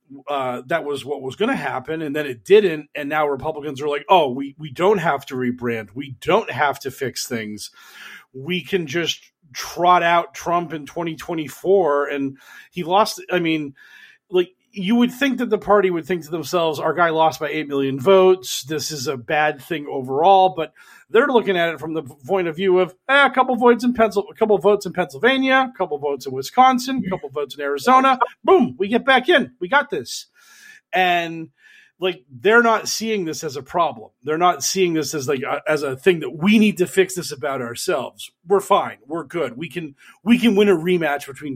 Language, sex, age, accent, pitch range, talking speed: English, male, 40-59, American, 140-195 Hz, 210 wpm